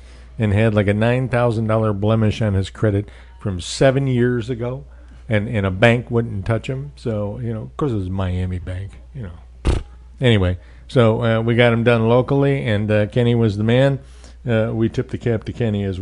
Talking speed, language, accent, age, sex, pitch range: 200 wpm, English, American, 60-79, male, 95-125 Hz